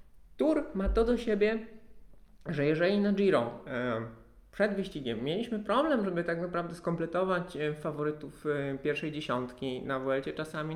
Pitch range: 130-165 Hz